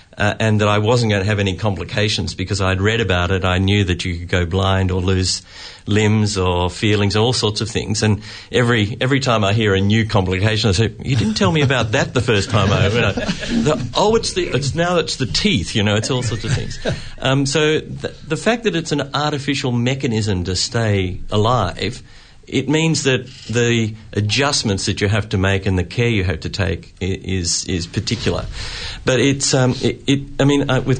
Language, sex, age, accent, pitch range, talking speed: English, male, 50-69, Australian, 95-125 Hz, 215 wpm